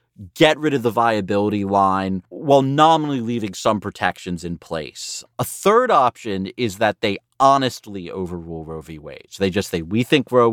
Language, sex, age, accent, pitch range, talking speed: English, male, 30-49, American, 95-140 Hz, 175 wpm